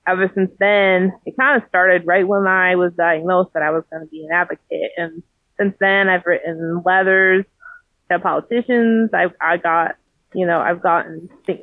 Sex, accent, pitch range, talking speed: female, American, 170-195 Hz, 180 wpm